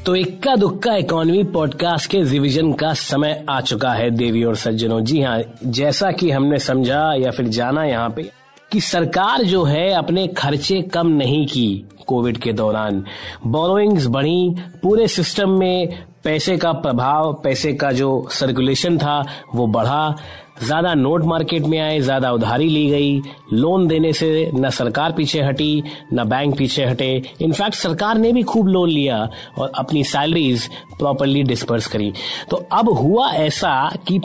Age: 30-49